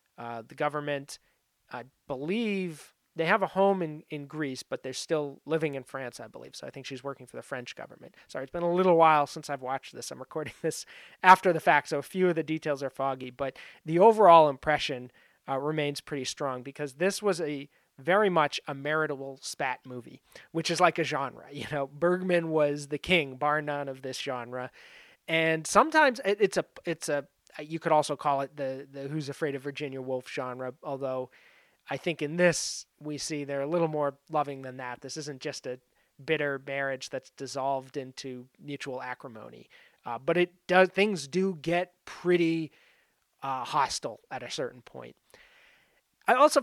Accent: American